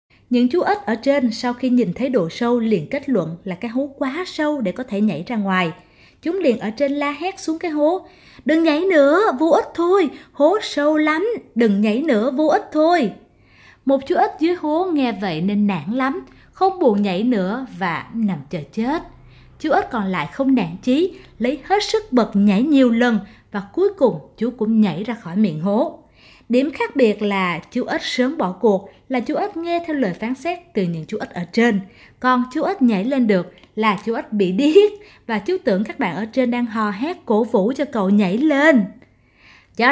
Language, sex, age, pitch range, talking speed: Vietnamese, female, 20-39, 210-295 Hz, 215 wpm